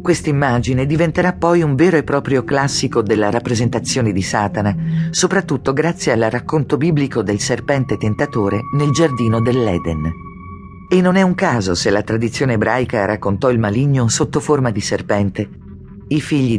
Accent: native